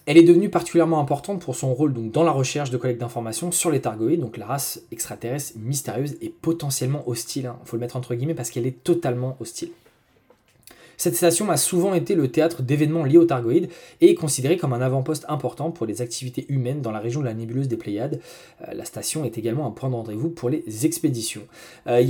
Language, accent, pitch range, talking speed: French, French, 120-165 Hz, 215 wpm